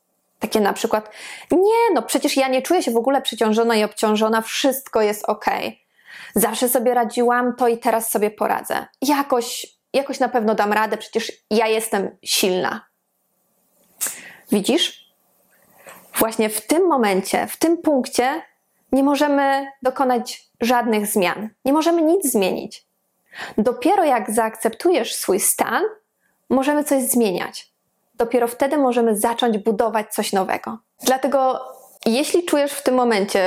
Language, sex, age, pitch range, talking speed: Polish, female, 20-39, 220-270 Hz, 135 wpm